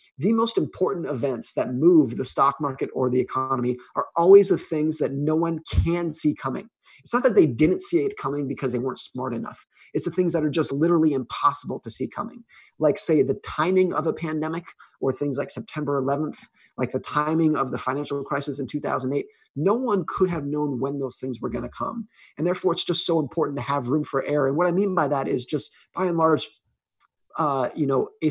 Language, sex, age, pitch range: English, male, 30-49, 135-165 Hz